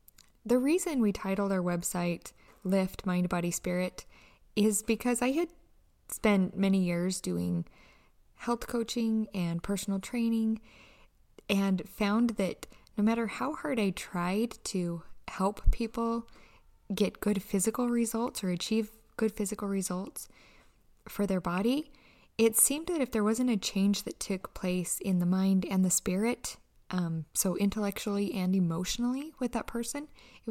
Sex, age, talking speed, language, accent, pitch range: female, 20-39, 145 wpm, English, American, 180-225 Hz